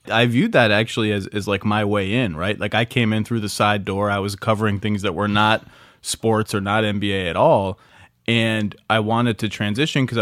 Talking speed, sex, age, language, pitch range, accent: 225 wpm, male, 20-39, English, 105-125 Hz, American